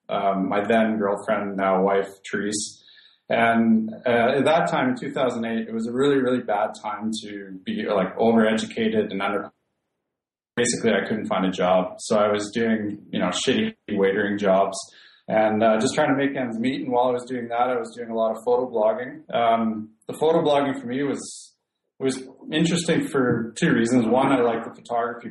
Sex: male